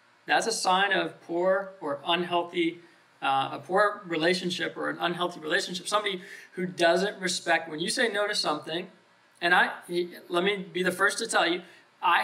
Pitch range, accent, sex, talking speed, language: 155-190 Hz, American, male, 175 wpm, English